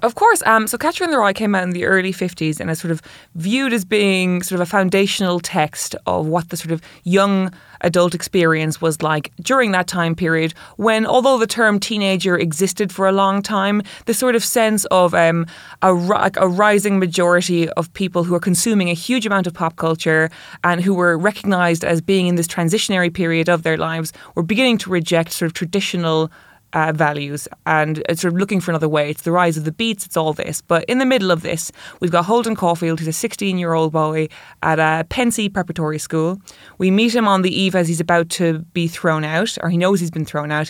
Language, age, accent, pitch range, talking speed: English, 20-39, Irish, 160-195 Hz, 220 wpm